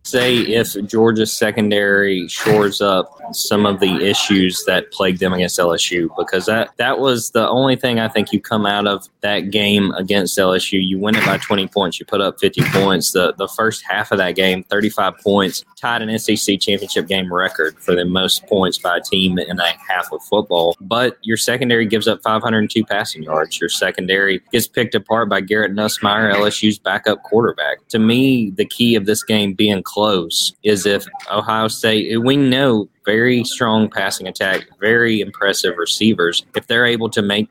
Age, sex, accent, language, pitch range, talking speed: 20-39, male, American, English, 100-110 Hz, 185 wpm